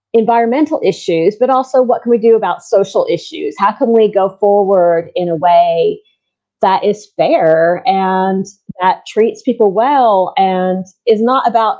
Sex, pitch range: female, 180-225 Hz